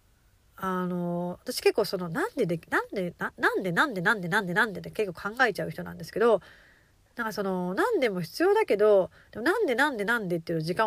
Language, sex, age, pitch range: Japanese, female, 30-49, 165-245 Hz